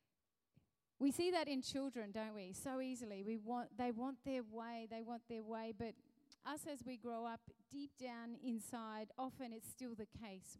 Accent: Australian